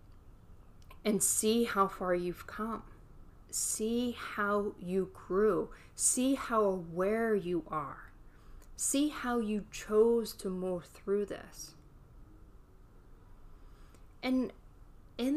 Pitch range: 160-210 Hz